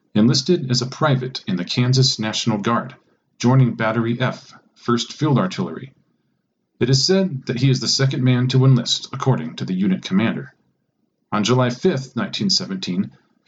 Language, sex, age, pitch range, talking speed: English, male, 40-59, 120-140 Hz, 155 wpm